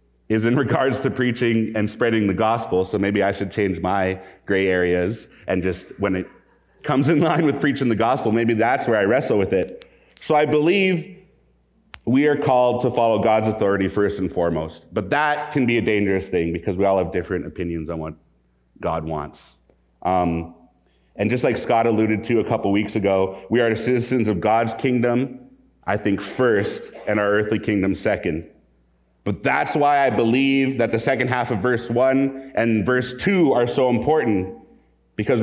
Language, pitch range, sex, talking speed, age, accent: English, 95-125 Hz, male, 185 wpm, 30-49, American